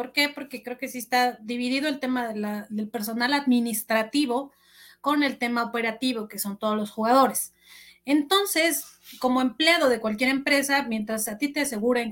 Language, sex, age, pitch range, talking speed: Spanish, female, 30-49, 210-265 Hz, 175 wpm